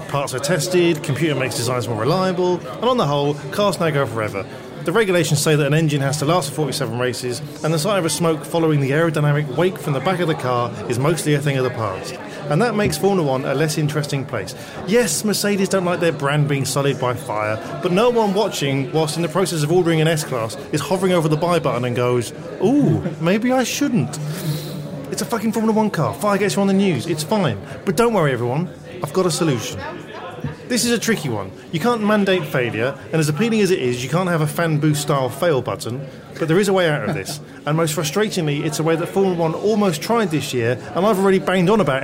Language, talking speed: English, 235 wpm